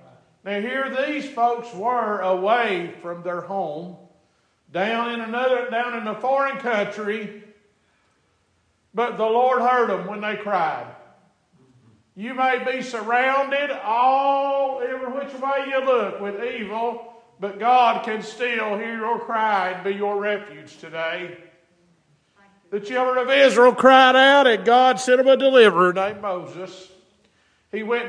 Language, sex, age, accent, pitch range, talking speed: English, male, 50-69, American, 205-255 Hz, 140 wpm